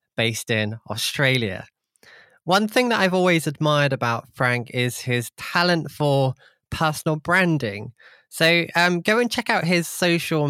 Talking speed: 145 wpm